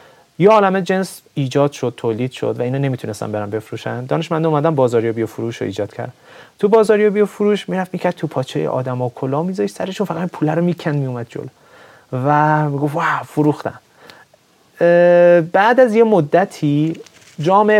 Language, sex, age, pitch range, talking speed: Persian, male, 30-49, 135-180 Hz, 160 wpm